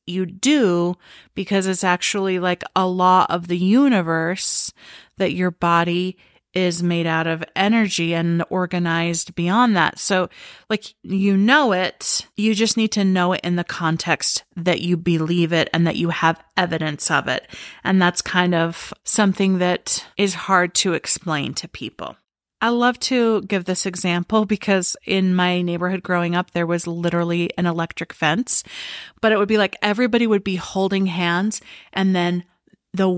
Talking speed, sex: 165 wpm, female